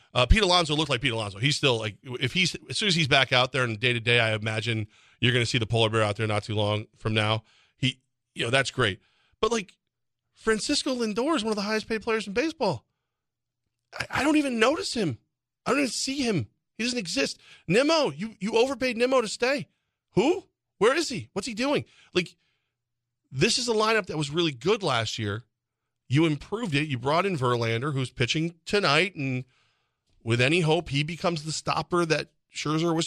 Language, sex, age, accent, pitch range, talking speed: English, male, 40-59, American, 120-185 Hz, 210 wpm